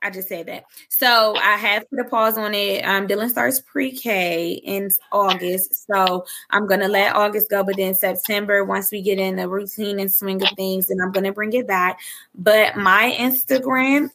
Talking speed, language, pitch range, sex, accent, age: 200 wpm, English, 195-230 Hz, female, American, 20-39